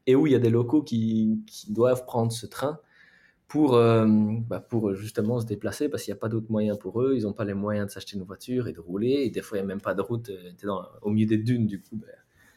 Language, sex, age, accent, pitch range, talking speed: French, male, 20-39, French, 105-125 Hz, 280 wpm